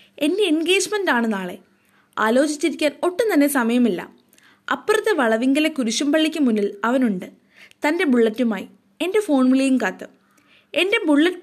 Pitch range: 220-300 Hz